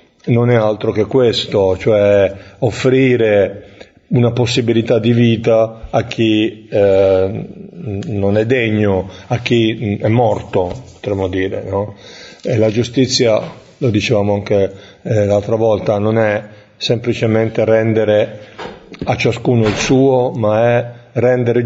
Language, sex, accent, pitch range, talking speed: Italian, male, native, 105-120 Hz, 120 wpm